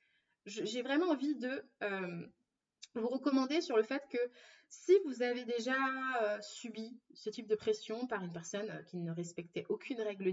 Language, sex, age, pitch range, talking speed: French, female, 20-39, 205-255 Hz, 175 wpm